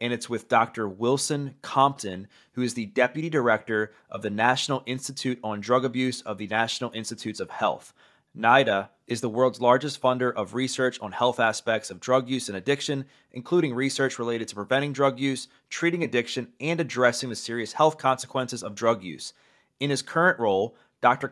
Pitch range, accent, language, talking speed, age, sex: 120-145 Hz, American, English, 175 wpm, 20-39, male